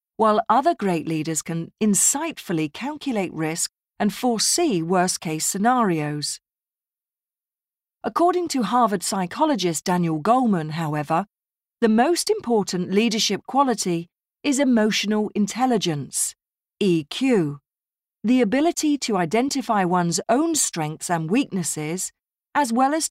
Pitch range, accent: 170-235 Hz, British